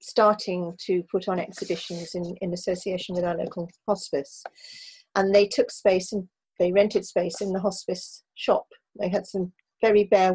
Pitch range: 185-245 Hz